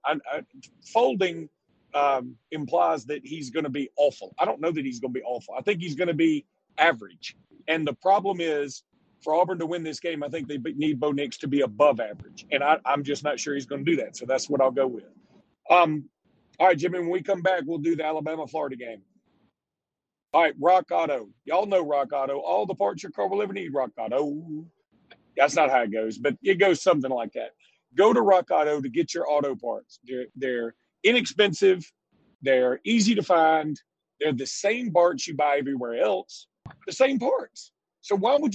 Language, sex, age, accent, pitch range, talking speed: English, male, 40-59, American, 145-190 Hz, 205 wpm